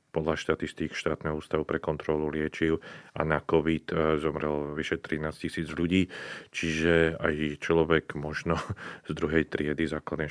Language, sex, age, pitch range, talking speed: Slovak, male, 40-59, 80-95 Hz, 135 wpm